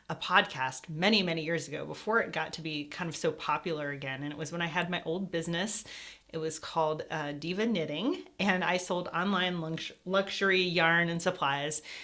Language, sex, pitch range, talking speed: English, female, 155-190 Hz, 200 wpm